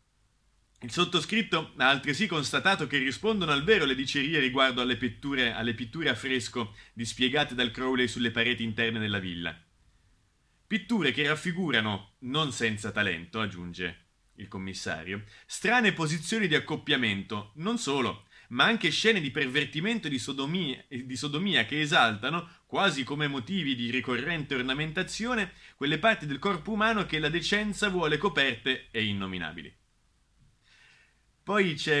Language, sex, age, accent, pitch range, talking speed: Italian, male, 30-49, native, 115-185 Hz, 135 wpm